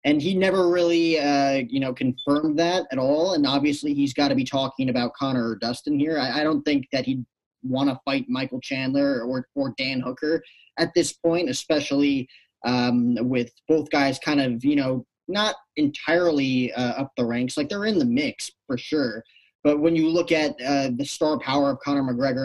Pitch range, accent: 130-165 Hz, American